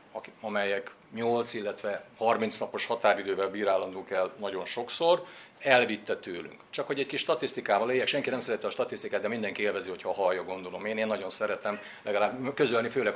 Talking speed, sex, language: 165 wpm, male, Hungarian